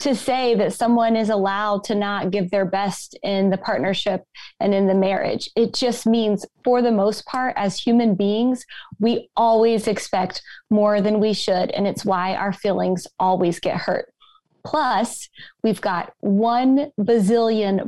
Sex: female